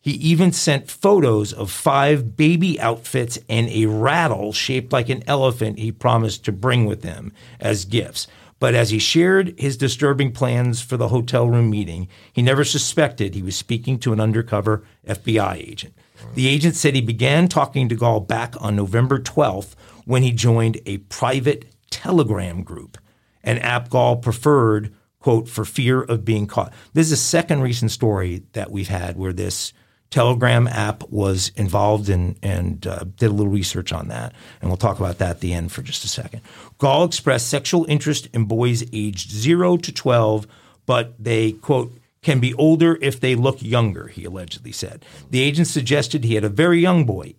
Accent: American